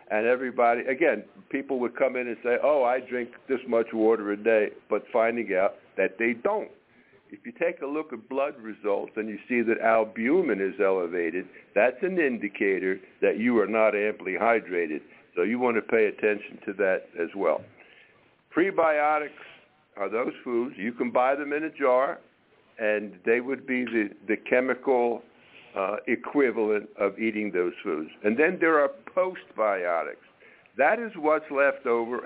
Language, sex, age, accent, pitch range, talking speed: English, male, 60-79, American, 110-155 Hz, 170 wpm